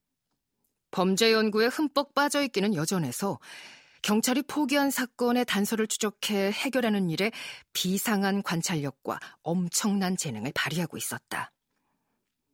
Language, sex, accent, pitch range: Korean, female, native, 175-245 Hz